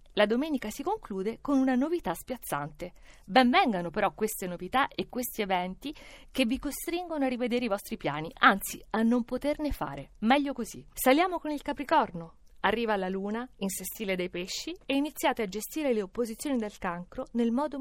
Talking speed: 170 wpm